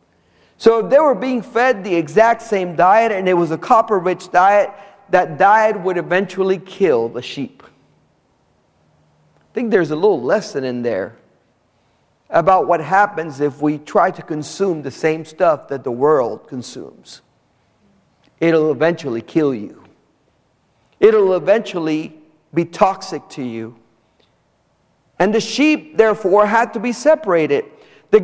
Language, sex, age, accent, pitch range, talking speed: English, male, 40-59, American, 160-220 Hz, 140 wpm